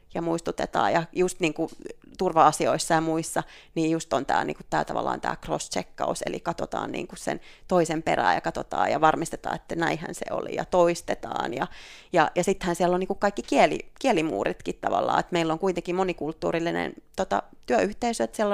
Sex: female